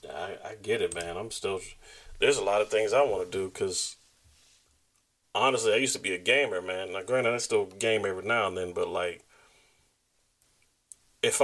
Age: 30-49